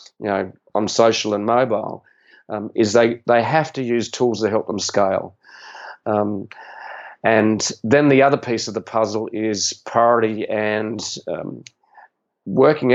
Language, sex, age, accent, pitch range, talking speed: English, male, 40-59, Australian, 110-125 Hz, 150 wpm